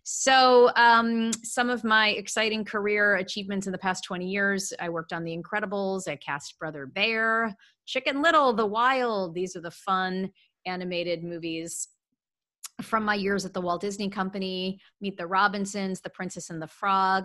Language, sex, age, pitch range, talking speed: English, female, 30-49, 170-220 Hz, 165 wpm